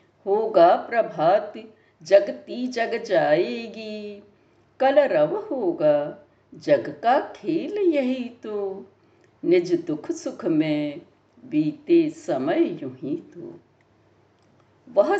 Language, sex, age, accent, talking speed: Hindi, female, 60-79, native, 80 wpm